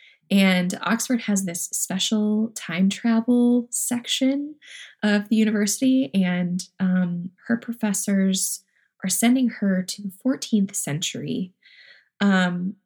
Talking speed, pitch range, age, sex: 105 wpm, 185-235 Hz, 20-39, female